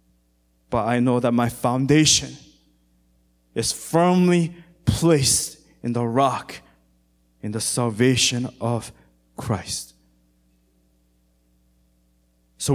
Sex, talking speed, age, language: male, 85 wpm, 20-39, English